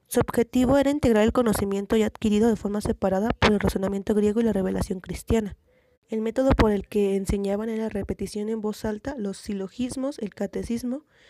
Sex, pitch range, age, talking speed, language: female, 200-230 Hz, 20-39, 185 wpm, Spanish